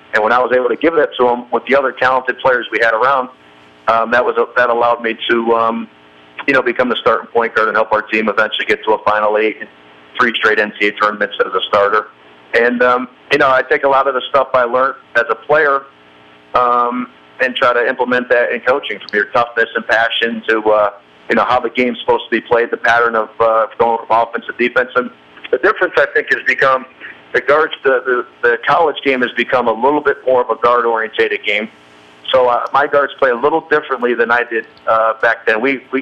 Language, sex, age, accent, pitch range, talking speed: English, male, 50-69, American, 110-130 Hz, 235 wpm